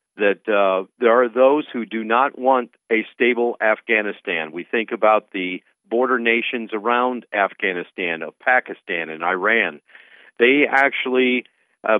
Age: 50-69